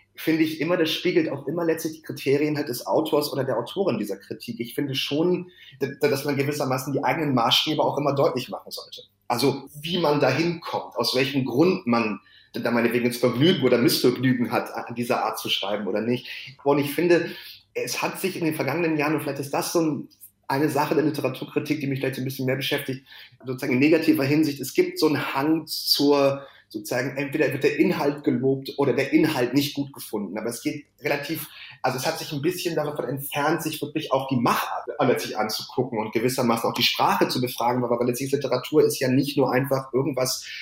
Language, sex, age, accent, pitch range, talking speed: German, male, 30-49, German, 125-155 Hz, 205 wpm